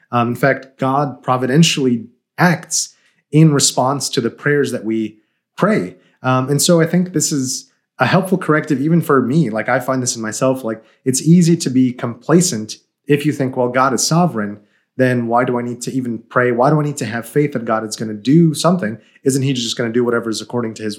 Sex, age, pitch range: male, 30-49, 120-150 Hz